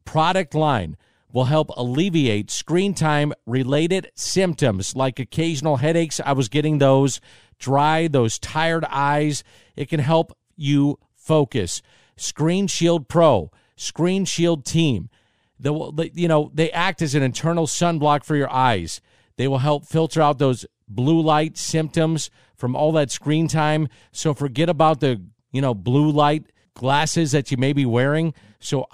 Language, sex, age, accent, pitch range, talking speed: English, male, 50-69, American, 130-160 Hz, 155 wpm